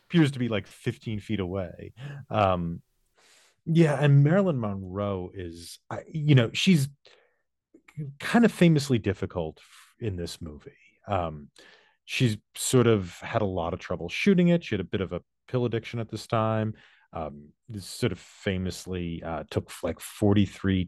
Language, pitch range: English, 90-120 Hz